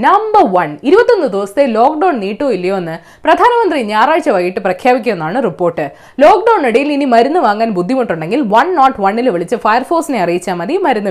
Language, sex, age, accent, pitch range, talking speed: Malayalam, female, 20-39, native, 195-315 Hz, 110 wpm